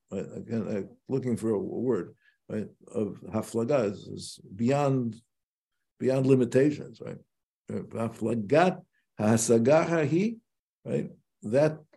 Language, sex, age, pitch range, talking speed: English, male, 60-79, 110-145 Hz, 85 wpm